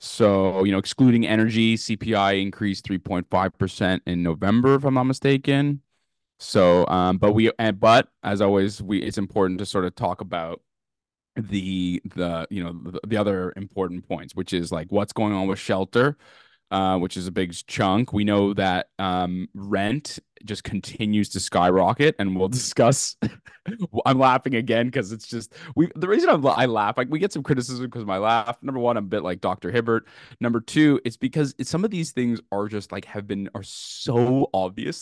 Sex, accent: male, American